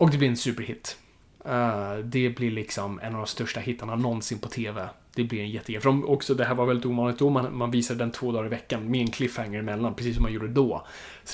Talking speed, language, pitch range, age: 255 wpm, Swedish, 115-130 Hz, 20-39